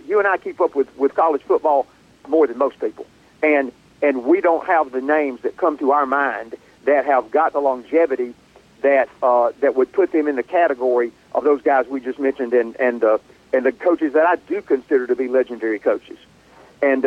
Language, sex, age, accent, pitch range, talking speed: English, male, 50-69, American, 130-185 Hz, 210 wpm